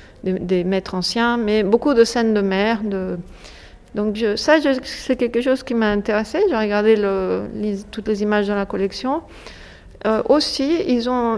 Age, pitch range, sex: 30-49, 210-260 Hz, female